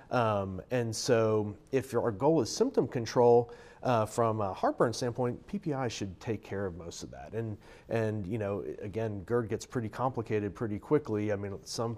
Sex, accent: male, American